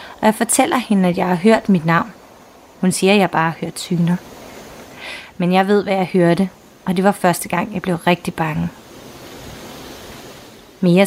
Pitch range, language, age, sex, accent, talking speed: 175-210 Hz, Danish, 30-49, female, native, 185 wpm